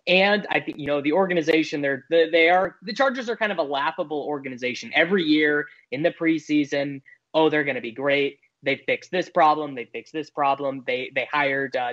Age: 20-39